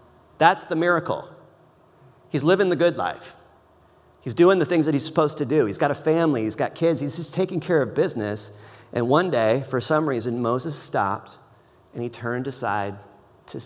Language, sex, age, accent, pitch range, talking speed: English, male, 40-59, American, 105-145 Hz, 190 wpm